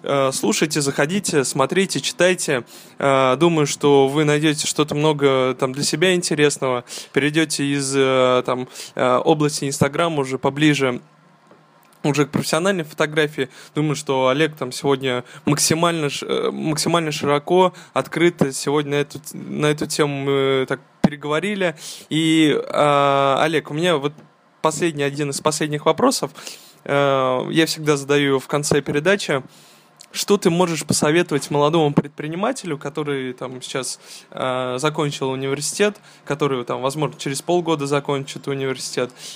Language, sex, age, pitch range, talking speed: Russian, male, 20-39, 135-160 Hz, 120 wpm